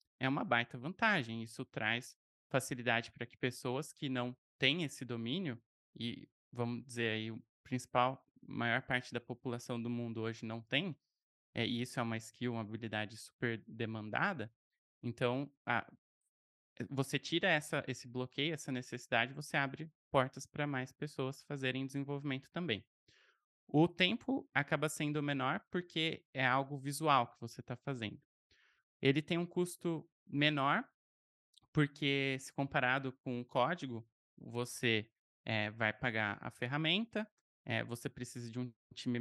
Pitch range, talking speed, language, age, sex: 115-145 Hz, 135 wpm, Portuguese, 20-39, male